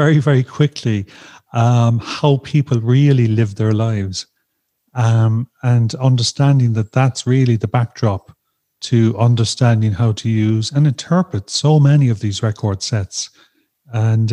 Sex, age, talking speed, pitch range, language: male, 40-59, 135 wpm, 115-145 Hz, English